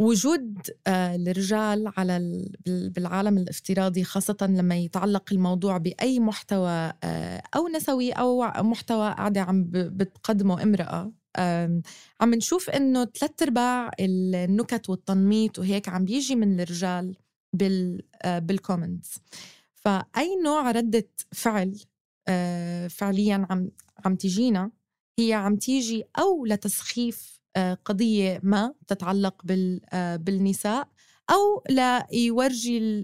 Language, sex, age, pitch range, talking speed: Arabic, female, 20-39, 190-235 Hz, 105 wpm